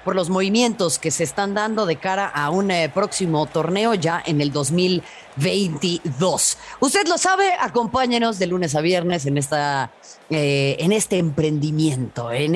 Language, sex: Spanish, female